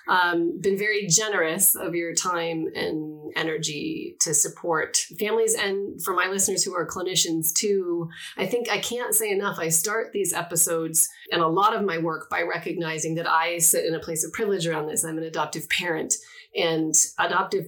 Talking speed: 185 wpm